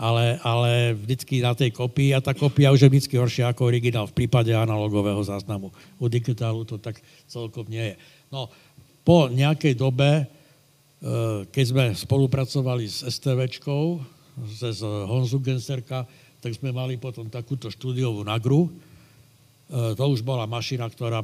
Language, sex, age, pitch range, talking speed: Slovak, male, 70-89, 115-140 Hz, 140 wpm